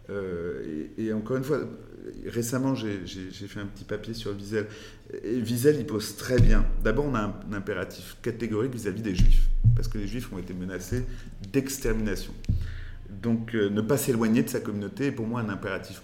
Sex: male